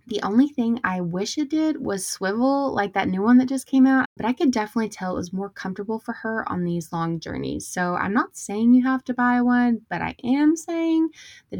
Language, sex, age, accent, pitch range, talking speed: English, female, 20-39, American, 180-245 Hz, 240 wpm